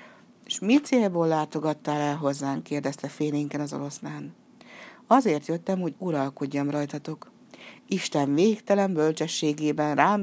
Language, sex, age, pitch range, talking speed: Hungarian, female, 60-79, 145-190 Hz, 110 wpm